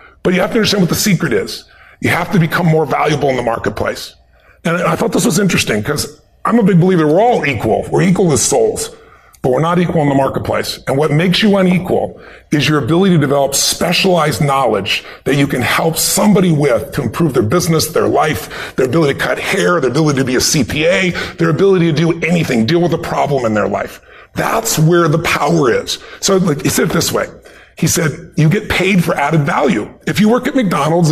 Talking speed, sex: 220 wpm, female